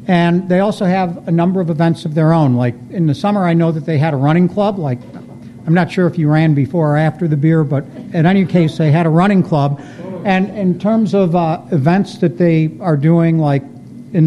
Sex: male